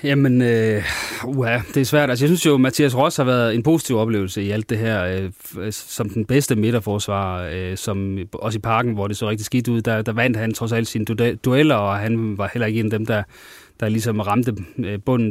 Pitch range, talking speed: 105-125 Hz, 235 wpm